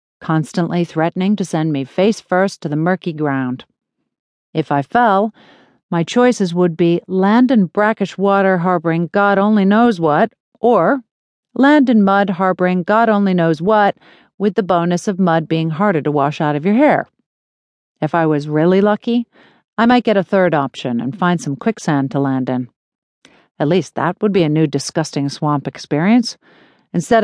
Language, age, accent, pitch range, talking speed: English, 50-69, American, 160-210 Hz, 170 wpm